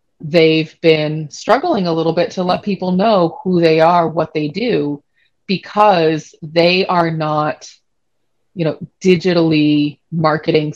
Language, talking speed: English, 135 wpm